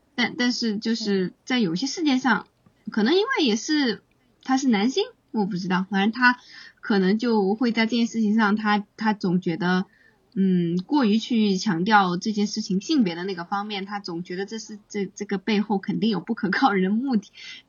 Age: 20-39